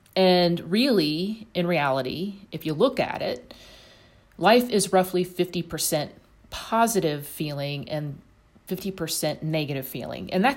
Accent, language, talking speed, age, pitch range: American, English, 120 wpm, 40-59, 145-195 Hz